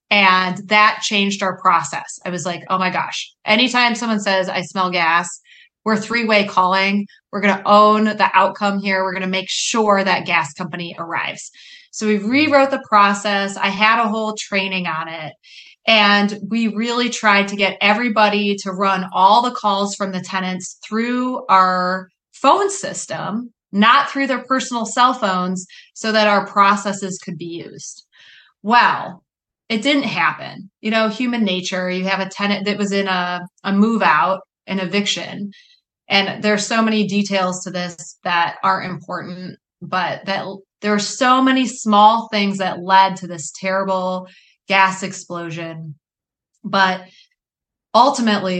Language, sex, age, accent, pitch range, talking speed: English, female, 20-39, American, 185-215 Hz, 160 wpm